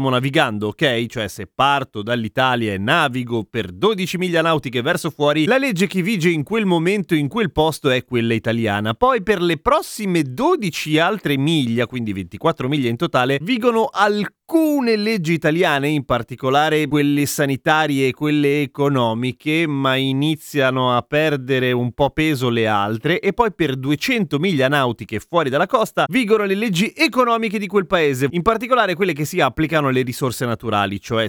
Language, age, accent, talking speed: Italian, 30-49, native, 165 wpm